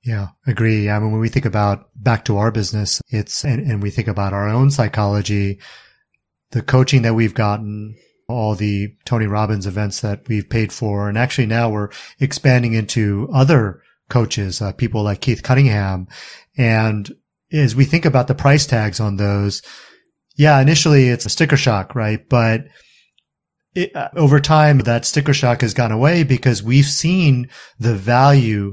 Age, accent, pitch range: 30-49, American, 105-135 Hz